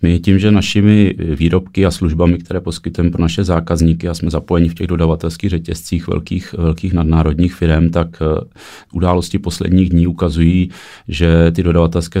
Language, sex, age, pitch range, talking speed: Czech, male, 30-49, 80-85 Hz, 150 wpm